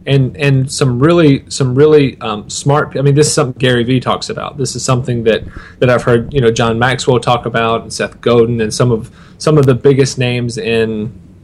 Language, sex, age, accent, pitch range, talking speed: English, male, 30-49, American, 115-145 Hz, 220 wpm